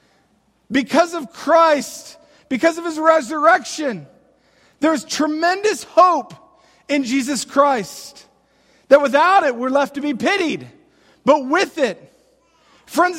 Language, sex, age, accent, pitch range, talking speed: English, male, 40-59, American, 255-320 Hz, 115 wpm